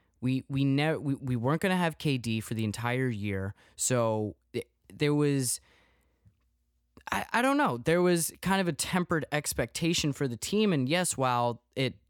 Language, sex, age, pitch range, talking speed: English, male, 20-39, 110-145 Hz, 180 wpm